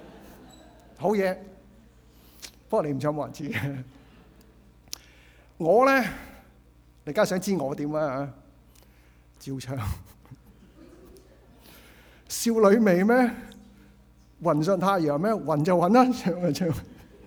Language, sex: Chinese, male